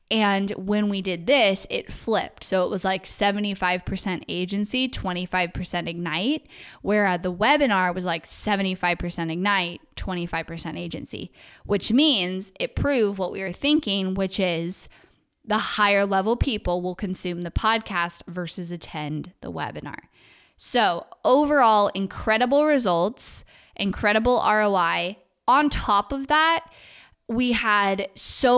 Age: 10-29